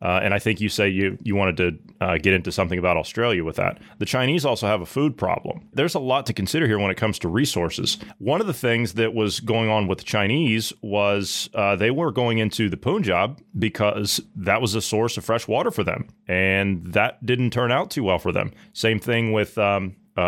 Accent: American